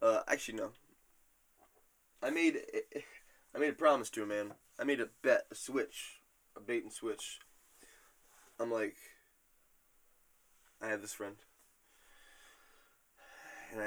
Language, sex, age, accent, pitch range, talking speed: English, male, 20-39, American, 110-155 Hz, 130 wpm